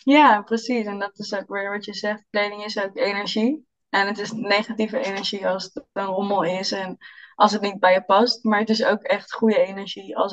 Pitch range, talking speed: 200-225 Hz, 225 wpm